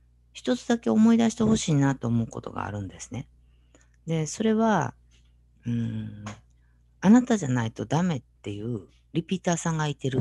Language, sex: Japanese, female